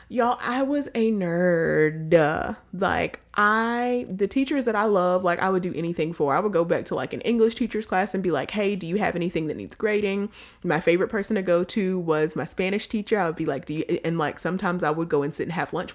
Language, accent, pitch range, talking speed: English, American, 165-215 Hz, 250 wpm